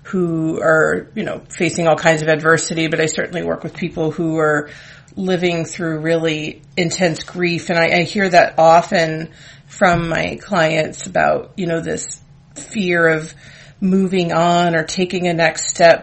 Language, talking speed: English, 165 wpm